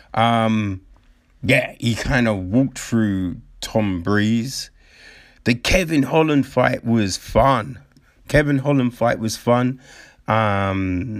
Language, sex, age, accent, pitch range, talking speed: English, male, 30-49, British, 110-135 Hz, 115 wpm